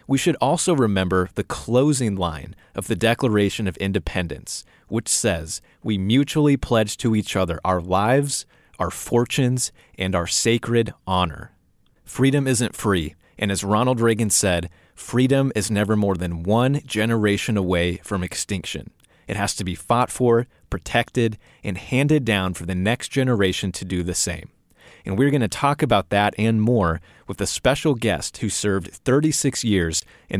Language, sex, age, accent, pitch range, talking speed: English, male, 30-49, American, 95-120 Hz, 160 wpm